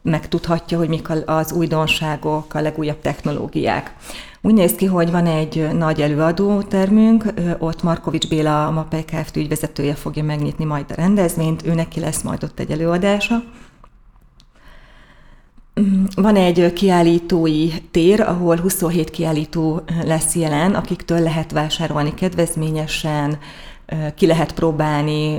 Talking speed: 120 wpm